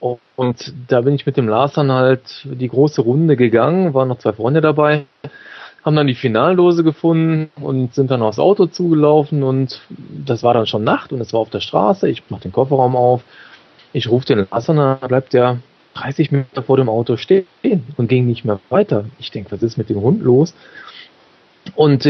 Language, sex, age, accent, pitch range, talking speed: German, male, 30-49, German, 120-150 Hz, 195 wpm